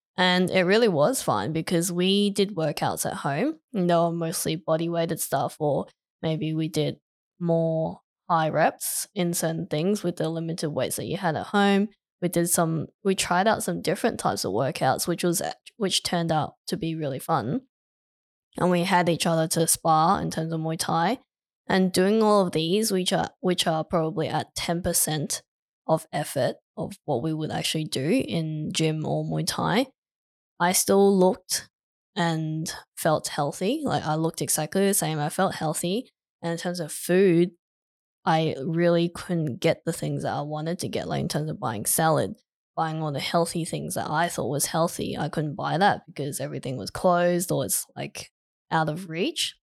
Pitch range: 160-180 Hz